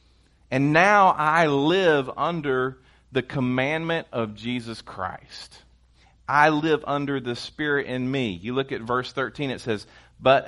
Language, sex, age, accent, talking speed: English, male, 40-59, American, 145 wpm